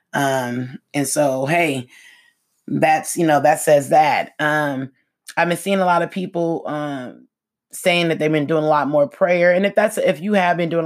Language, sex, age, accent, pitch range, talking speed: English, female, 20-39, American, 150-185 Hz, 200 wpm